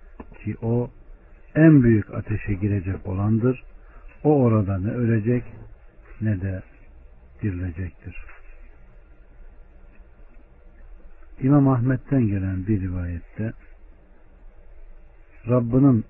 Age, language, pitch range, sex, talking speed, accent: 60-79, Turkish, 85-115 Hz, male, 75 wpm, native